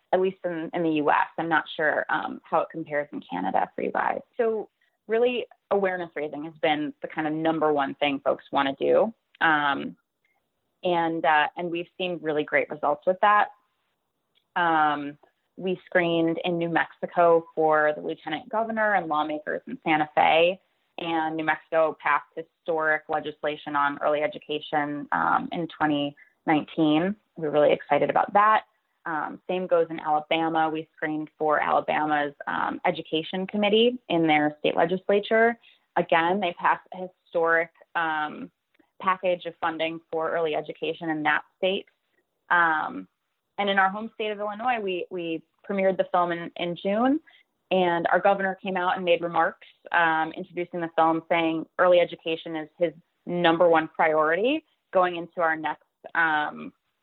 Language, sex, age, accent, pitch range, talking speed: English, female, 20-39, American, 155-185 Hz, 155 wpm